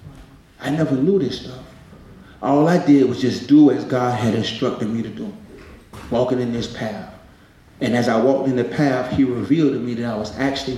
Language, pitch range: English, 125-200 Hz